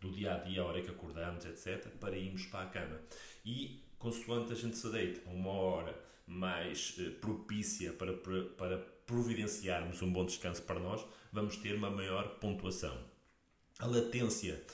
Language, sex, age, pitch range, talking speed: Portuguese, male, 40-59, 90-110 Hz, 155 wpm